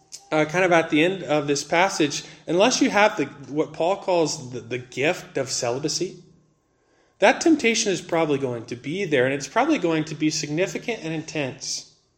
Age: 30-49